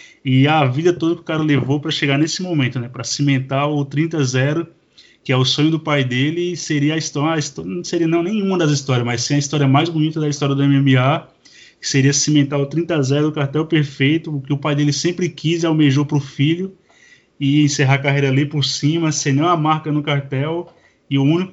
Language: Portuguese